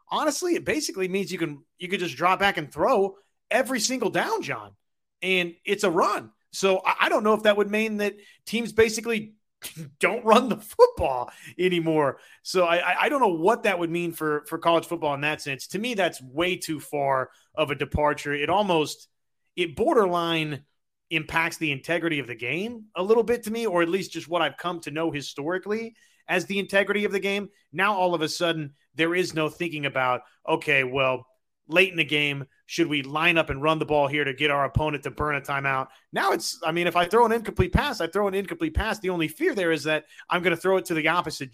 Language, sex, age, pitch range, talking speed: English, male, 30-49, 145-190 Hz, 225 wpm